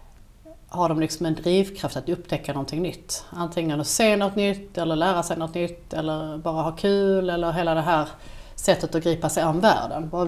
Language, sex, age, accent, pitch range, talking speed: Swedish, female, 30-49, native, 150-175 Hz, 205 wpm